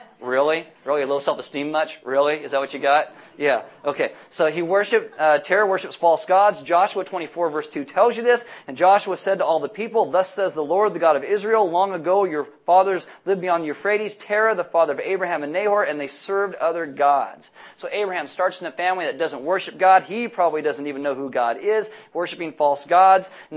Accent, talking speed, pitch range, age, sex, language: American, 220 wpm, 145-195 Hz, 30-49, male, English